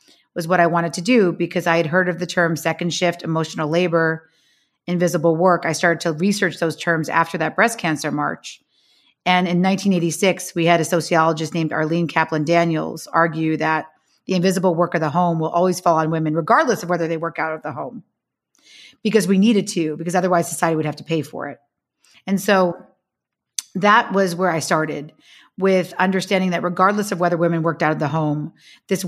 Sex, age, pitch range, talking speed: female, 40-59, 160-190 Hz, 200 wpm